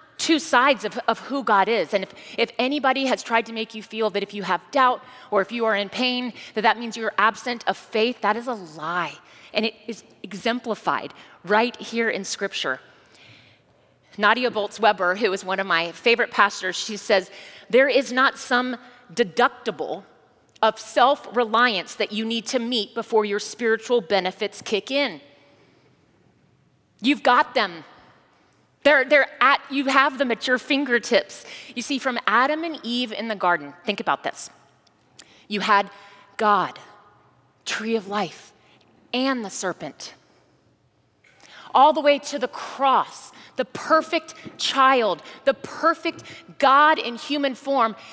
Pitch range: 210-255 Hz